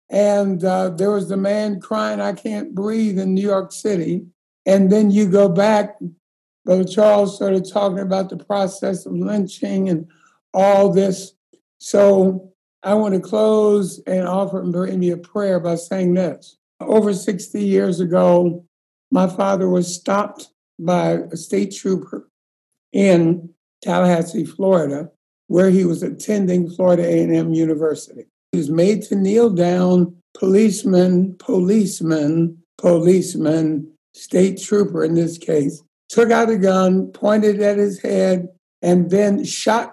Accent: American